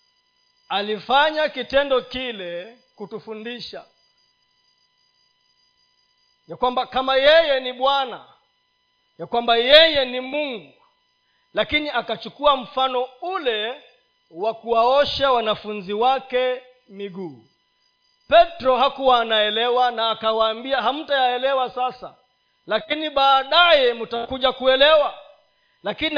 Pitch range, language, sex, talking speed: 220-320 Hz, Swahili, male, 85 wpm